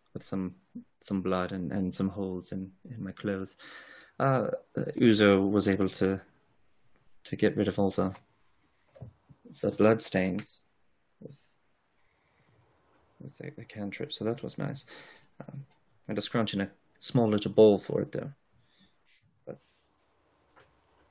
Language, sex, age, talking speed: English, male, 30-49, 140 wpm